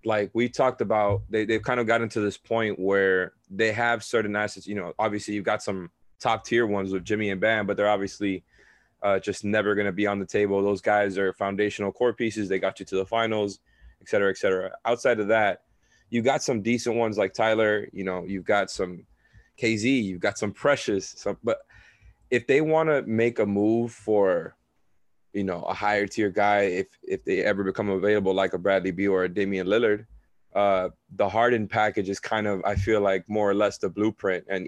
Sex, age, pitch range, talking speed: male, 20-39, 100-110 Hz, 215 wpm